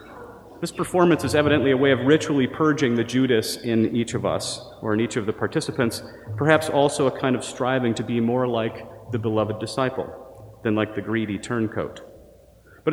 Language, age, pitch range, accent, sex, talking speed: English, 40-59, 110-135 Hz, American, male, 185 wpm